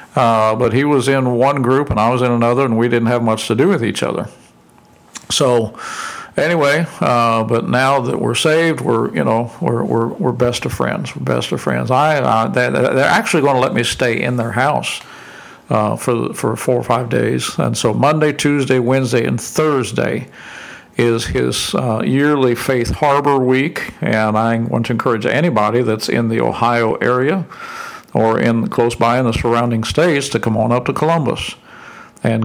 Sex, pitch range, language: male, 115-135 Hz, English